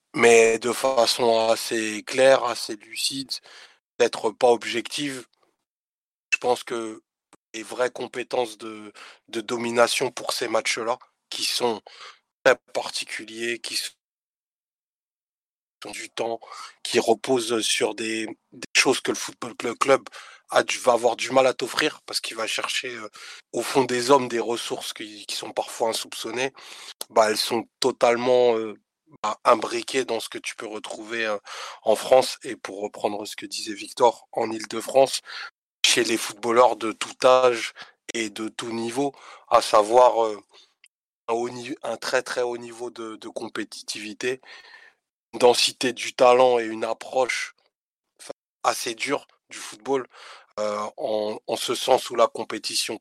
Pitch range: 110-130 Hz